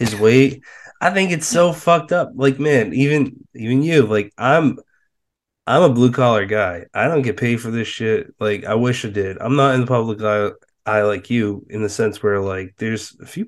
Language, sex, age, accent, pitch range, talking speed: English, male, 20-39, American, 105-125 Hz, 220 wpm